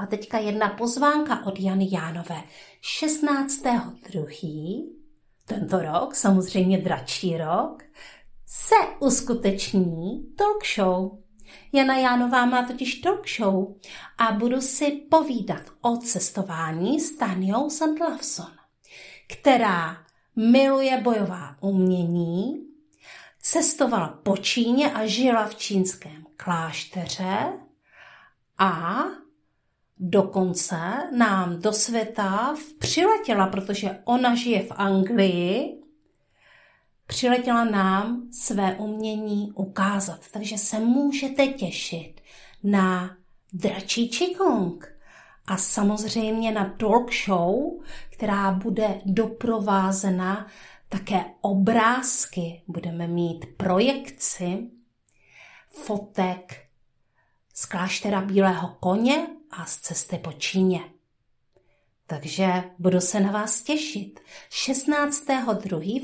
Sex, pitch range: female, 185-245 Hz